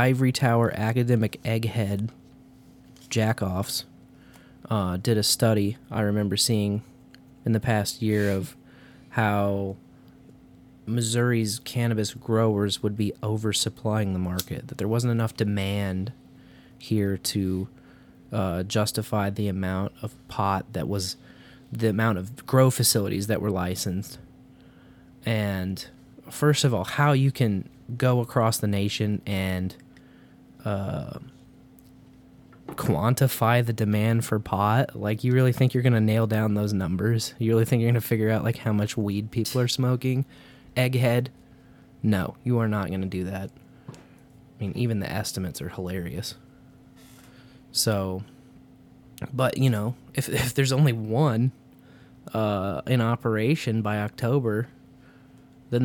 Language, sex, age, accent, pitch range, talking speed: English, male, 20-39, American, 105-130 Hz, 130 wpm